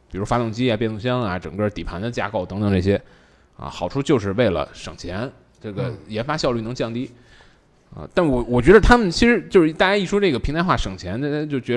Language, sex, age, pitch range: Chinese, male, 20-39, 110-150 Hz